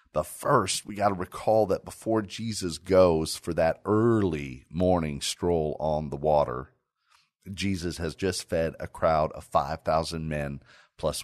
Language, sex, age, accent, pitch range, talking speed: English, male, 40-59, American, 75-100 Hz, 150 wpm